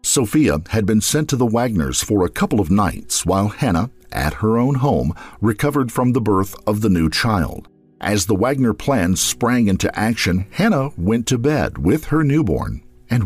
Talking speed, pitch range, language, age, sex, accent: 185 wpm, 95-125 Hz, English, 50-69, male, American